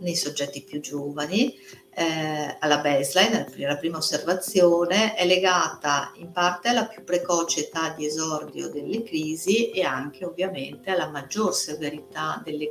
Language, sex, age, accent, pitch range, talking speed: Italian, female, 50-69, native, 150-185 Hz, 135 wpm